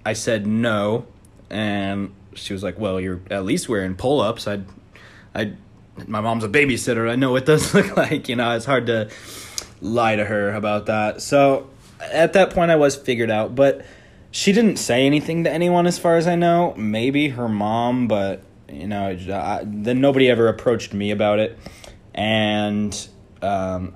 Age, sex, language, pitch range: 20-39, male, English, 105-135 Hz